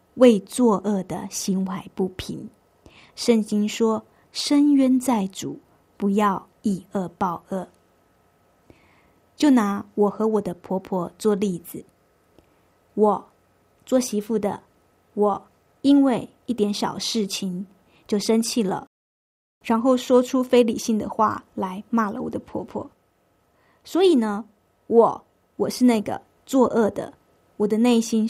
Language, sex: Chinese, female